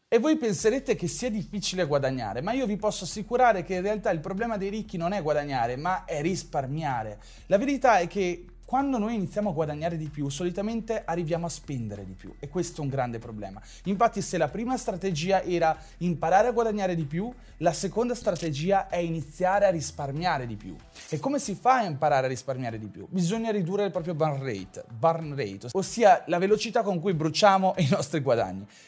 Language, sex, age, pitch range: Italian, male, 30-49, 160-210 Hz